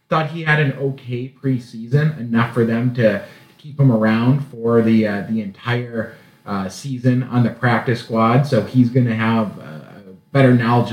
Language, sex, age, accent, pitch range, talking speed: English, male, 30-49, American, 115-135 Hz, 175 wpm